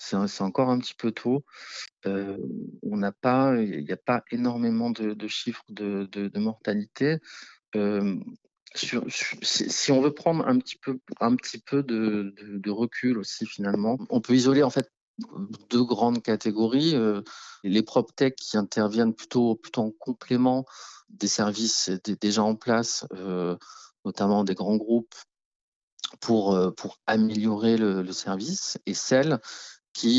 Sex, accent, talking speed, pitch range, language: male, French, 155 wpm, 100-125 Hz, French